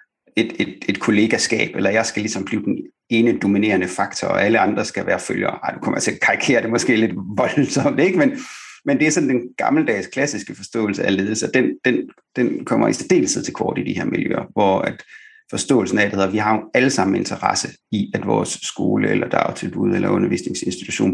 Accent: native